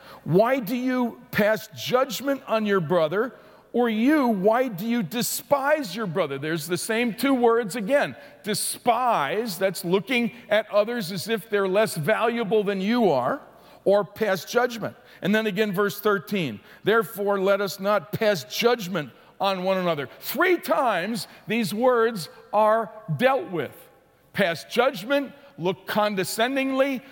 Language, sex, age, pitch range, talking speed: English, male, 50-69, 205-255 Hz, 140 wpm